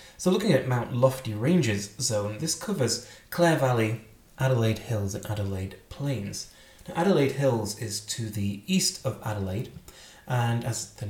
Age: 30-49